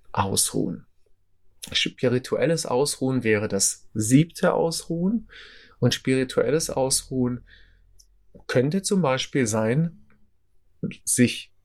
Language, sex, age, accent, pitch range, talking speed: German, male, 30-49, German, 95-135 Hz, 75 wpm